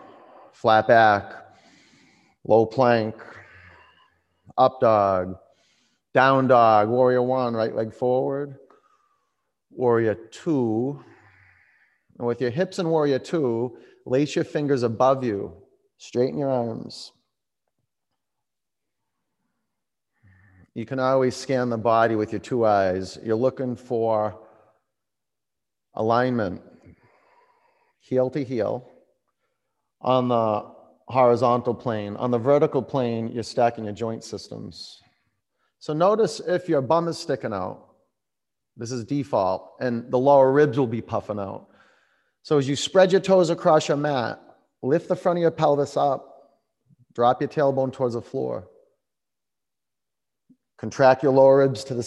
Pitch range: 115-150 Hz